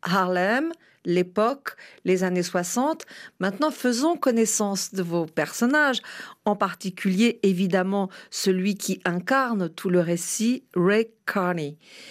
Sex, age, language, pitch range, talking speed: female, 50-69, French, 180-240 Hz, 110 wpm